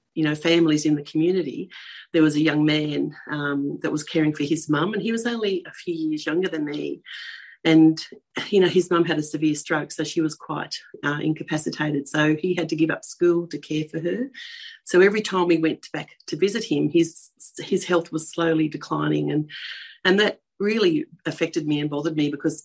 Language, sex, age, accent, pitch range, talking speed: English, female, 40-59, Australian, 150-175 Hz, 210 wpm